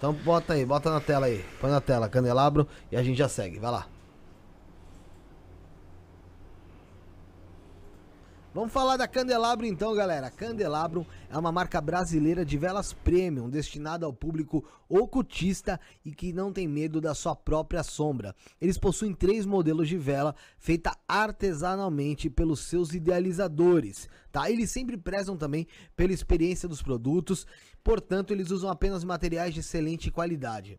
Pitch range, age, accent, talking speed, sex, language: 145-195 Hz, 20-39, Brazilian, 140 wpm, male, Portuguese